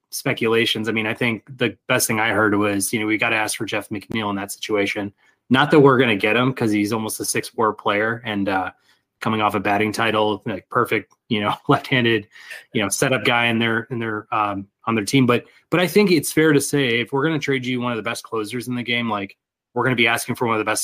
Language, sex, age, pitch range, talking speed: English, male, 20-39, 110-130 Hz, 265 wpm